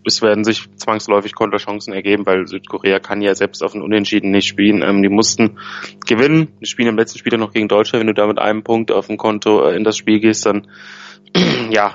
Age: 20-39